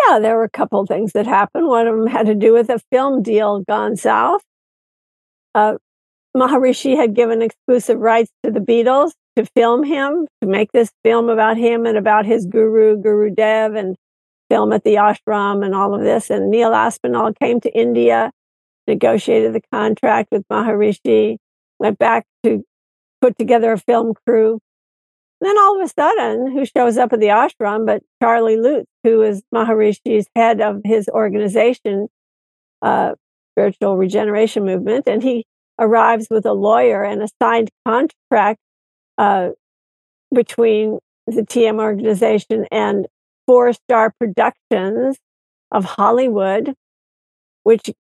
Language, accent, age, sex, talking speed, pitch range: English, American, 60-79, female, 150 wpm, 210-240 Hz